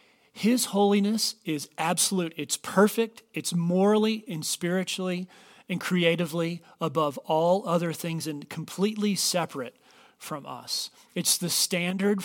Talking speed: 120 wpm